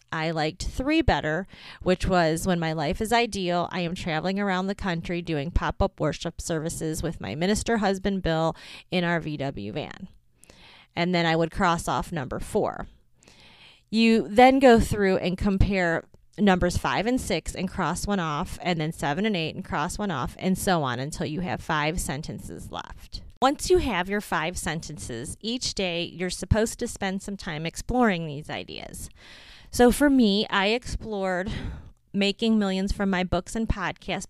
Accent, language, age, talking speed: American, English, 30-49, 175 wpm